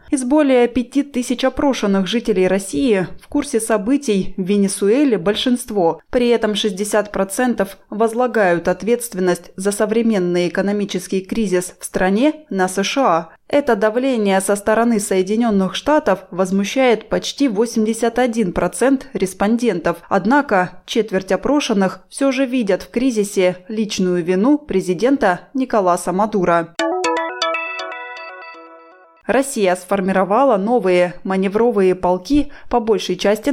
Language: Russian